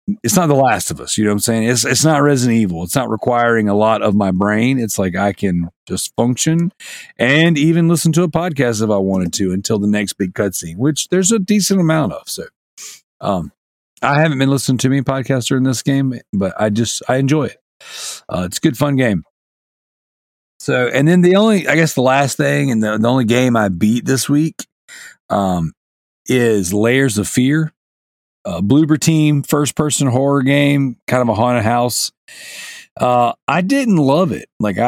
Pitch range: 110-145 Hz